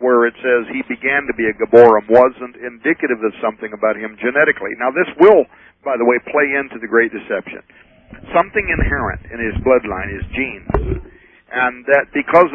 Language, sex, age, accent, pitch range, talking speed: English, male, 50-69, American, 110-125 Hz, 175 wpm